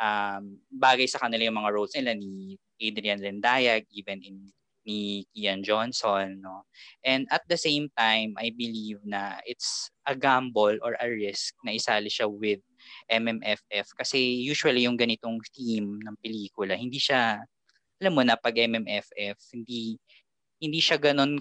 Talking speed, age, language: 150 wpm, 20-39, English